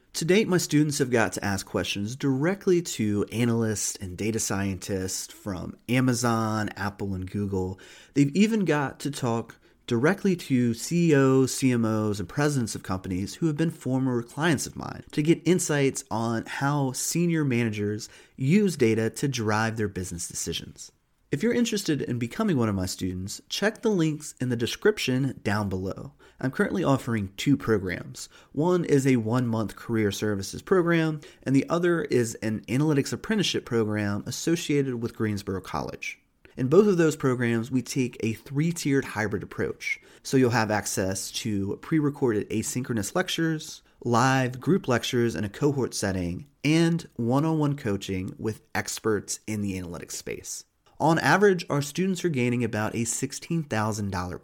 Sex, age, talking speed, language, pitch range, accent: male, 30-49, 155 wpm, English, 105-150 Hz, American